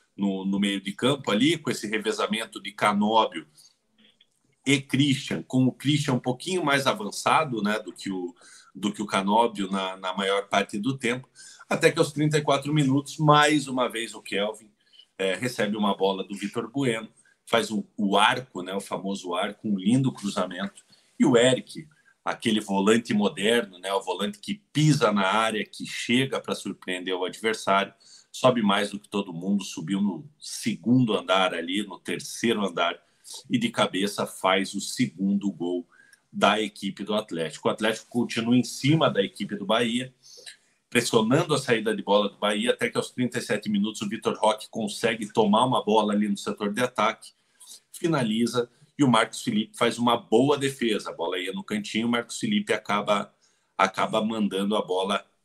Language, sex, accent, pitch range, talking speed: Portuguese, male, Brazilian, 100-130 Hz, 170 wpm